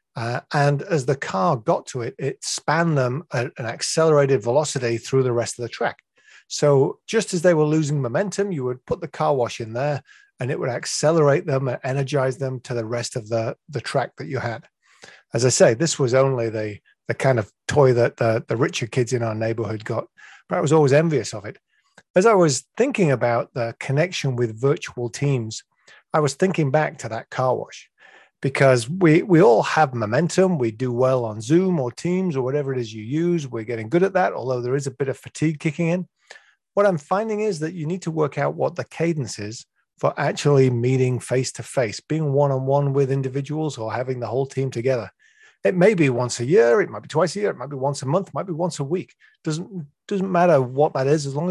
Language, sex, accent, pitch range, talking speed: English, male, British, 125-165 Hz, 225 wpm